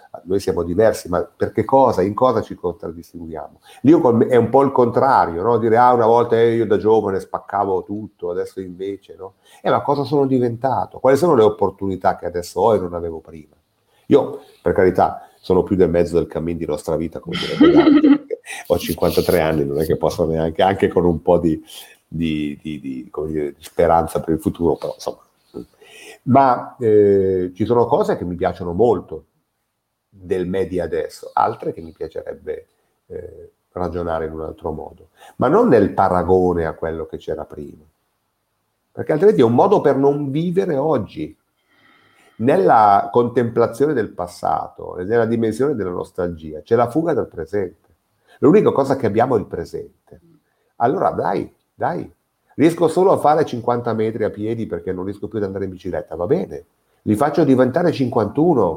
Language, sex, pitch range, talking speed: Italian, male, 90-145 Hz, 175 wpm